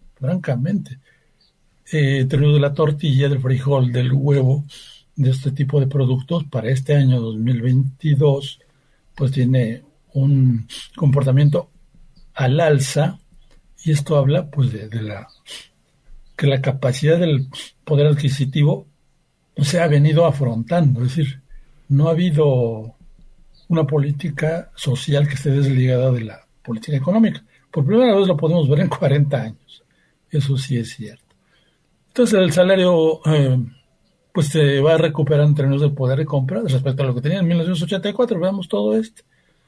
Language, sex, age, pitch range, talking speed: Spanish, male, 60-79, 135-165 Hz, 145 wpm